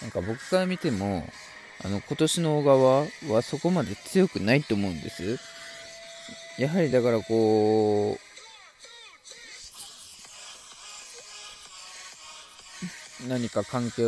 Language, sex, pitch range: Japanese, male, 105-155 Hz